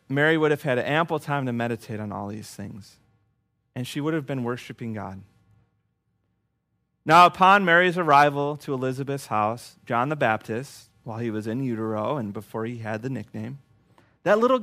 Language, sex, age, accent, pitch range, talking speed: English, male, 30-49, American, 110-155 Hz, 170 wpm